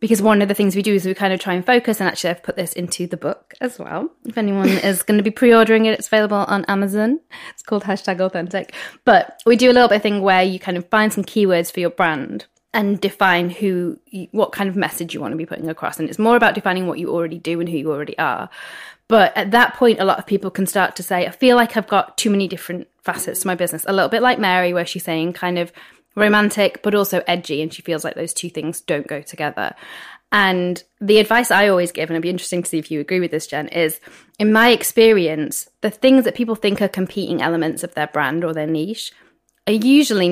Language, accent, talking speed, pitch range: English, British, 255 wpm, 170-215 Hz